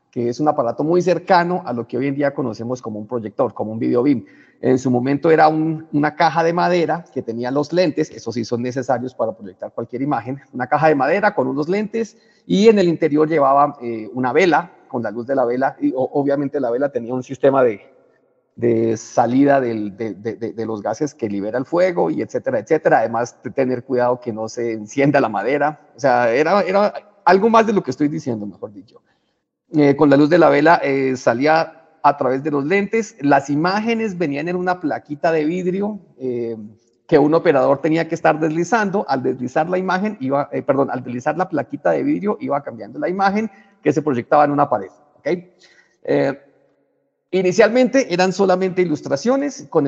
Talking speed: 200 wpm